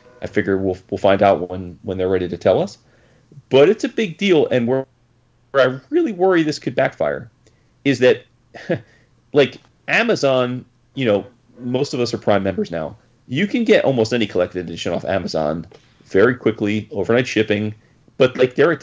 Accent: American